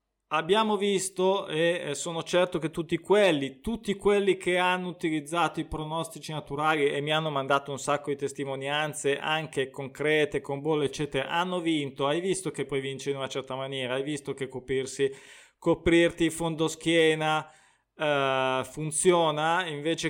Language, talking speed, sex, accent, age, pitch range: Italian, 150 wpm, male, native, 20-39, 145-185 Hz